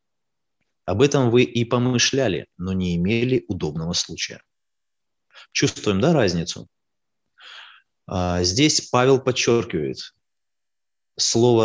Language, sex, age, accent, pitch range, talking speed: Russian, male, 30-49, native, 90-120 Hz, 90 wpm